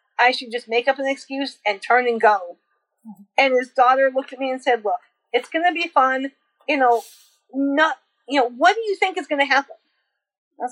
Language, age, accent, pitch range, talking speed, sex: English, 40-59, American, 230-280 Hz, 215 wpm, female